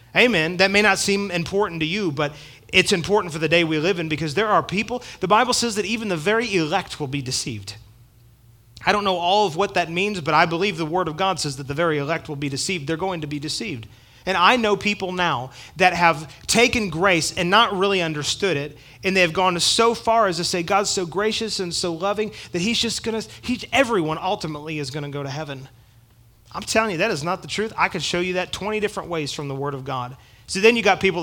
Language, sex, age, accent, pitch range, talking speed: English, male, 30-49, American, 155-205 Hz, 245 wpm